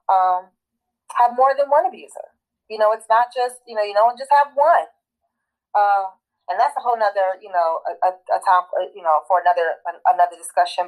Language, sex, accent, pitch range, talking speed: English, female, American, 180-250 Hz, 205 wpm